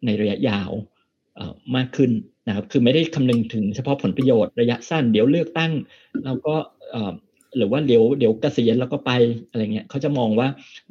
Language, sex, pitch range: Thai, male, 110-140 Hz